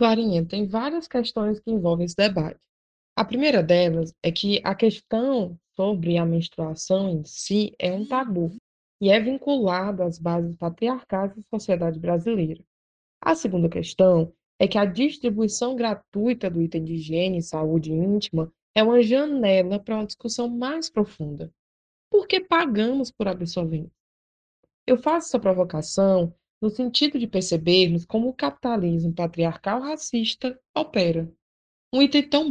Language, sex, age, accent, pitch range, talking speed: Portuguese, female, 20-39, Brazilian, 170-235 Hz, 140 wpm